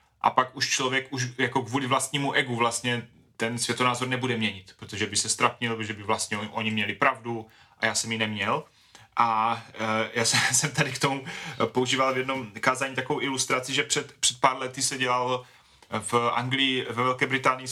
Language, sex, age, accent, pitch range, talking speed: Czech, male, 30-49, native, 120-135 Hz, 180 wpm